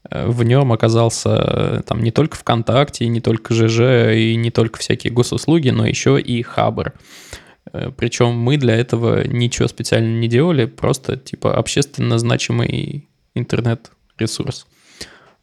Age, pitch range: 20-39, 115-135 Hz